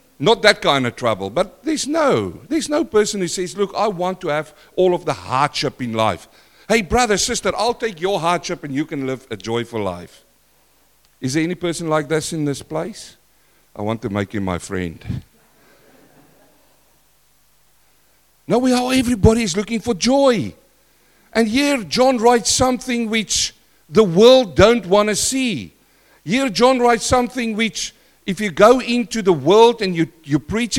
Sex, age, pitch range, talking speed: male, 60-79, 150-230 Hz, 175 wpm